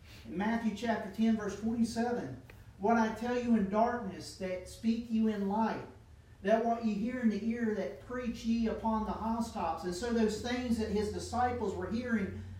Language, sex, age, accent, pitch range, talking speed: English, male, 40-59, American, 180-230 Hz, 180 wpm